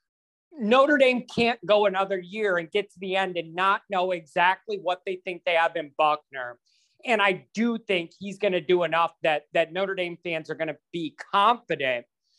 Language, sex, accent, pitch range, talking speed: English, male, American, 175-220 Hz, 200 wpm